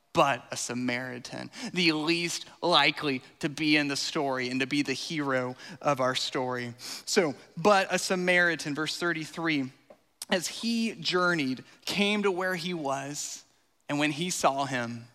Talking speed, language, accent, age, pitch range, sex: 150 wpm, English, American, 20-39, 140-205 Hz, male